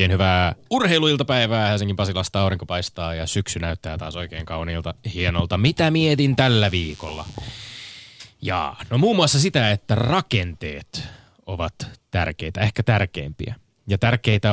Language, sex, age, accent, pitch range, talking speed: Finnish, male, 20-39, native, 90-115 Hz, 125 wpm